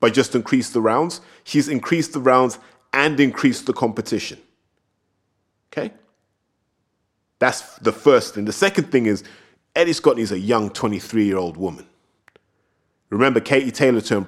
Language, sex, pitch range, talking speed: English, male, 110-165 Hz, 135 wpm